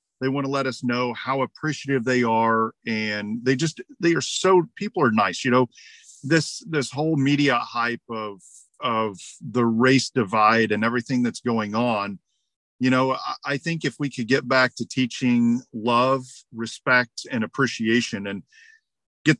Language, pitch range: English, 110-135 Hz